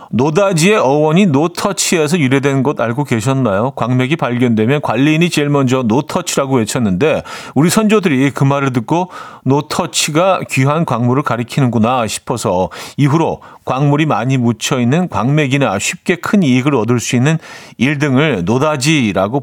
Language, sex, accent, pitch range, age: Korean, male, native, 125-175 Hz, 40-59